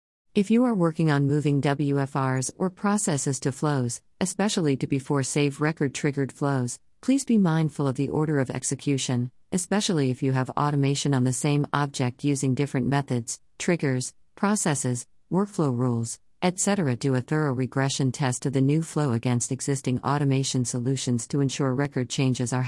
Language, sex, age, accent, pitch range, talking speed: English, female, 50-69, American, 130-150 Hz, 160 wpm